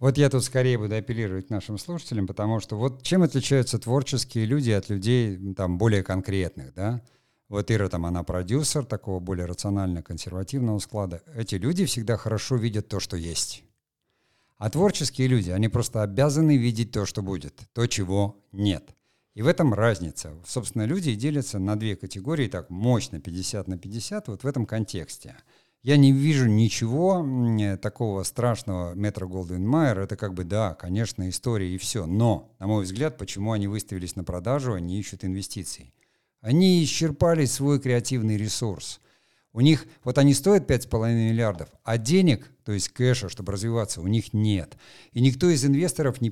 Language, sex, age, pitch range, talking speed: Russian, male, 50-69, 100-130 Hz, 165 wpm